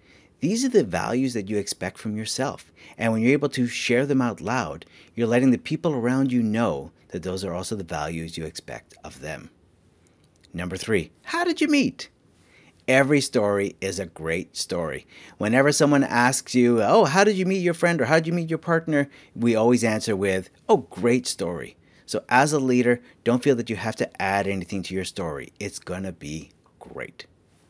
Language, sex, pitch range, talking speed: English, male, 95-130 Hz, 200 wpm